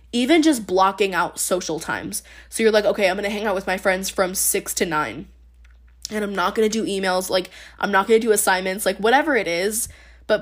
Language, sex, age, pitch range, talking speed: English, female, 10-29, 175-210 Hz, 235 wpm